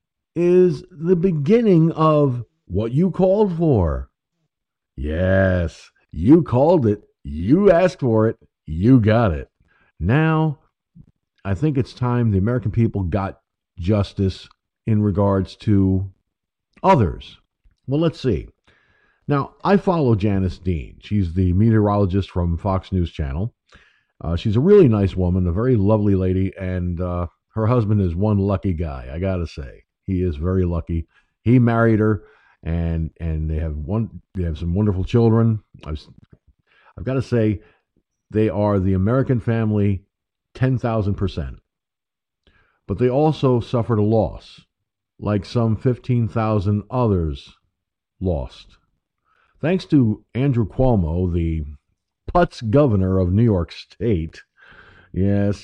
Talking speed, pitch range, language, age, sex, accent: 130 wpm, 90-125 Hz, English, 50-69, male, American